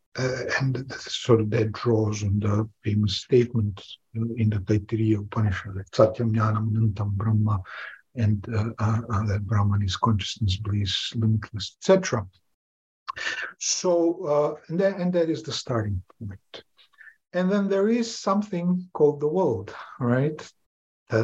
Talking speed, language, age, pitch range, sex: 140 wpm, English, 60-79, 110-140 Hz, male